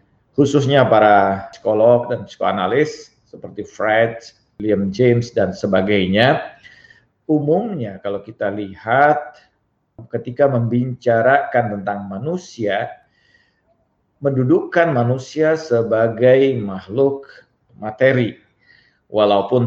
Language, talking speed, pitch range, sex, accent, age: Indonesian, 75 wpm, 105-135 Hz, male, native, 50-69